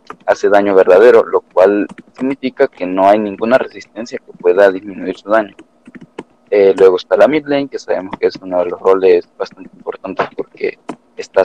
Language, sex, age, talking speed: English, male, 30-49, 180 wpm